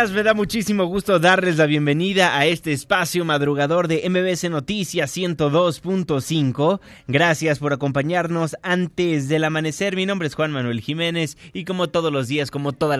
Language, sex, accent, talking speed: Spanish, male, Mexican, 155 wpm